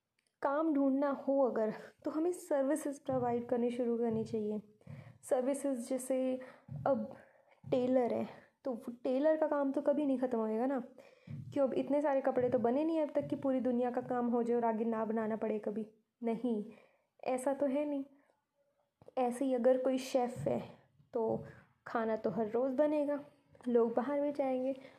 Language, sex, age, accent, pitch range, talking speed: Hindi, female, 20-39, native, 240-285 Hz, 180 wpm